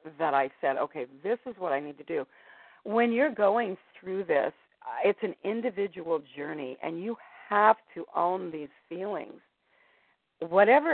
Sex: female